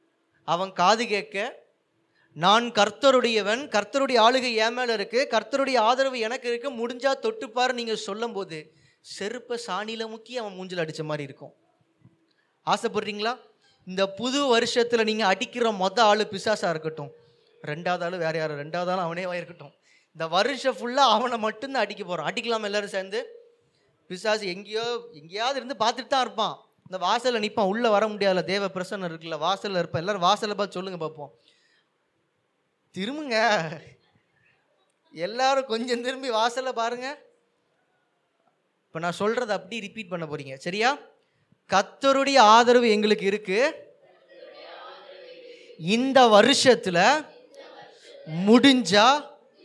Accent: native